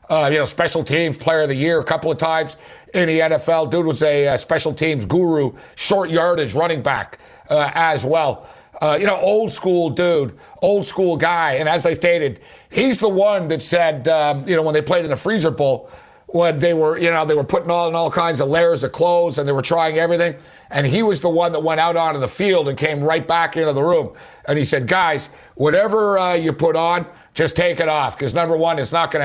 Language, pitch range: English, 155-175 Hz